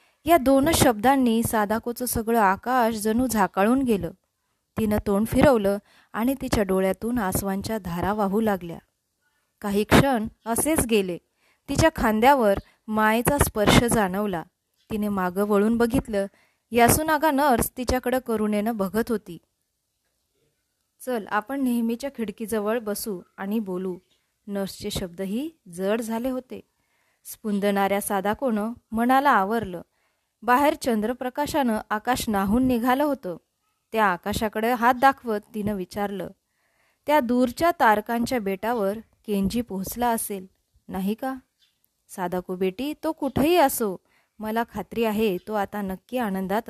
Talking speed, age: 115 wpm, 20-39